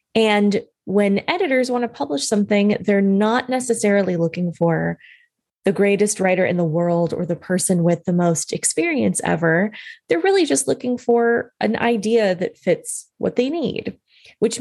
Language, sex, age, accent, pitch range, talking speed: English, female, 20-39, American, 185-240 Hz, 160 wpm